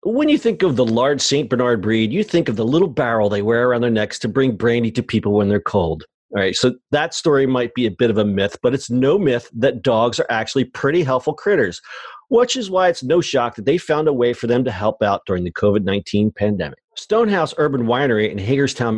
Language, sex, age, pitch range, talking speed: English, male, 40-59, 115-150 Hz, 240 wpm